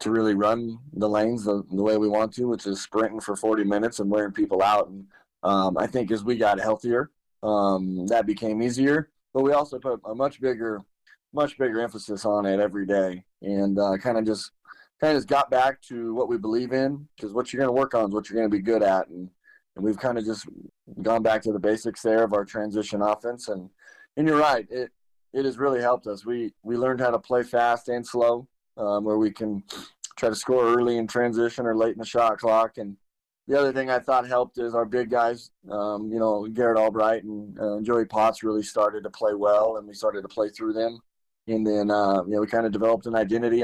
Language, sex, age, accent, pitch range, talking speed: English, male, 20-39, American, 105-120 Hz, 235 wpm